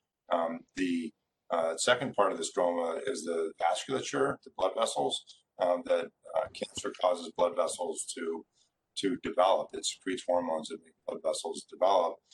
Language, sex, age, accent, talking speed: English, male, 40-59, American, 155 wpm